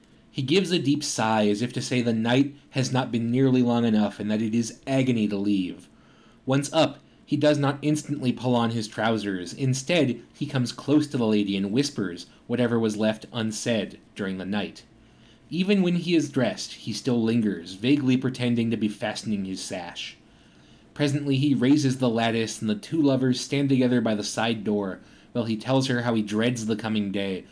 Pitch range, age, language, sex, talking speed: 110-135 Hz, 30-49, English, male, 195 wpm